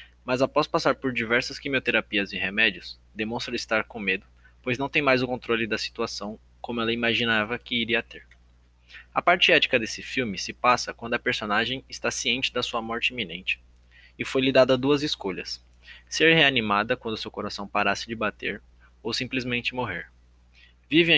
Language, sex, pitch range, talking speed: Portuguese, male, 95-125 Hz, 170 wpm